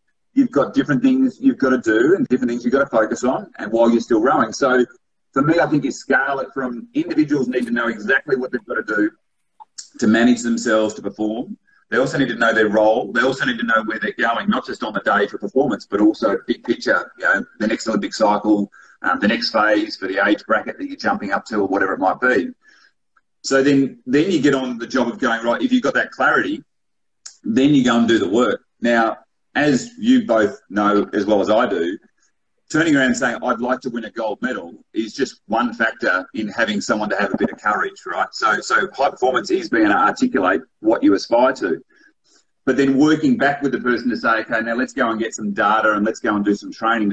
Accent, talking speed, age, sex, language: Australian, 240 wpm, 30-49, male, English